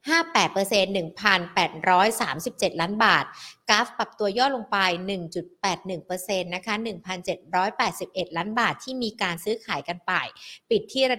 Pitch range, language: 185-245 Hz, Thai